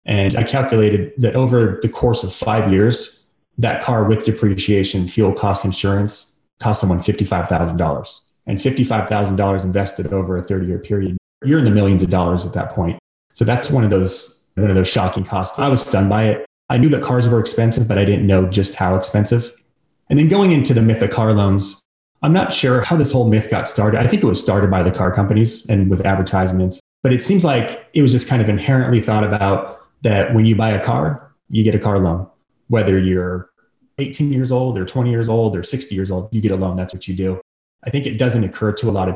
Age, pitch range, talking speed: 30-49, 95-115 Hz, 230 wpm